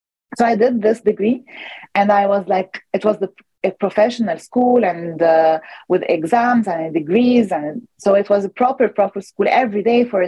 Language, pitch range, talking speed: English, 185-230 Hz, 180 wpm